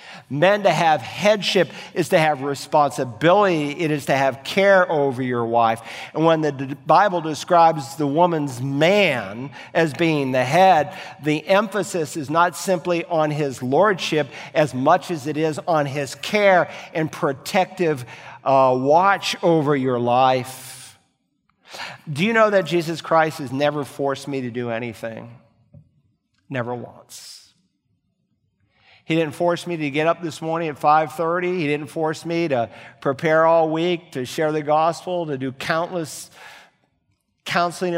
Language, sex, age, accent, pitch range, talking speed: English, male, 50-69, American, 130-170 Hz, 145 wpm